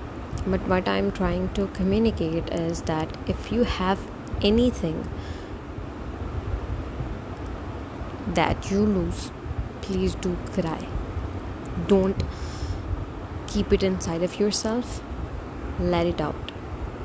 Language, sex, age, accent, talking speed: English, female, 20-39, Indian, 95 wpm